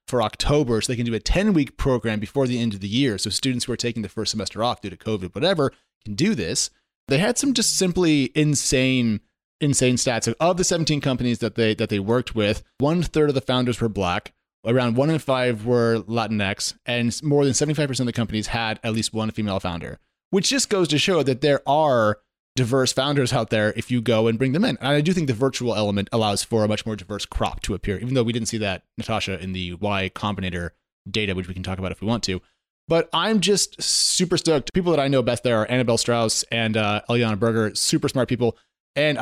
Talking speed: 235 wpm